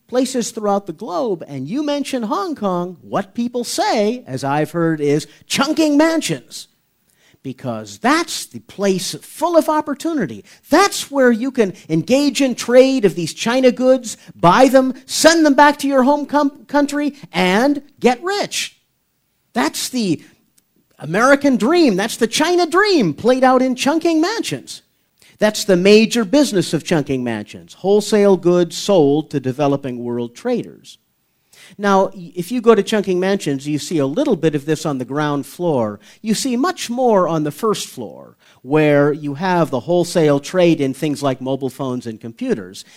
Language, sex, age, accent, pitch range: Chinese, male, 40-59, American, 155-255 Hz